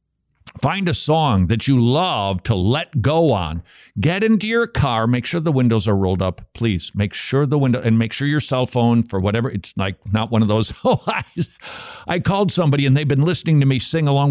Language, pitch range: English, 105-135 Hz